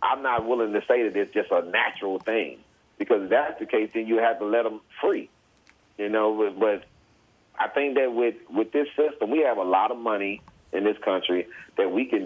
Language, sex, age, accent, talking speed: English, male, 40-59, American, 220 wpm